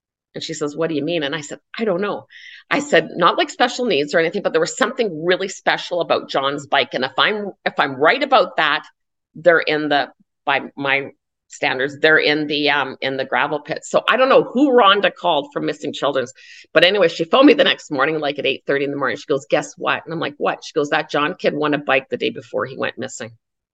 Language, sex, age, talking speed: English, female, 50-69, 250 wpm